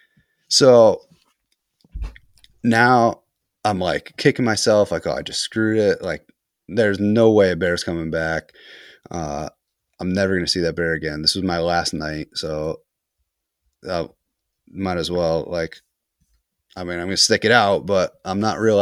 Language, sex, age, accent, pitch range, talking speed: English, male, 30-49, American, 80-105 Hz, 165 wpm